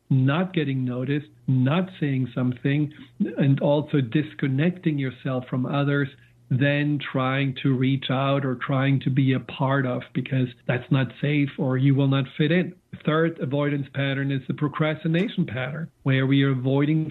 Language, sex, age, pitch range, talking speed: English, male, 50-69, 135-155 Hz, 160 wpm